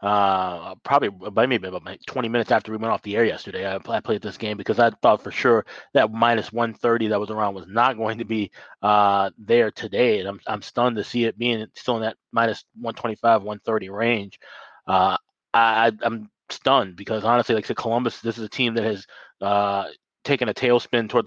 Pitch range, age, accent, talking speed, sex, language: 105-120 Hz, 20-39, American, 210 wpm, male, English